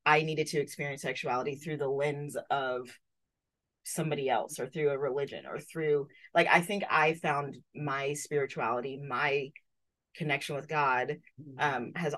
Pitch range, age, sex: 140-170 Hz, 30-49, female